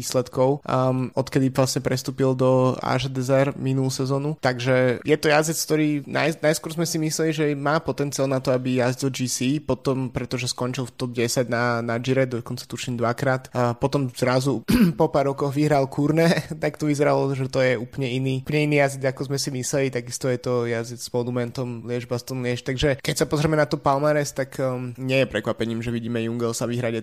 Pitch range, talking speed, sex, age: 125-140 Hz, 190 wpm, male, 20-39